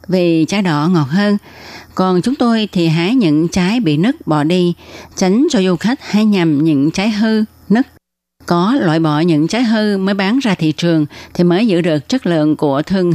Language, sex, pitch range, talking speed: Vietnamese, female, 155-200 Hz, 205 wpm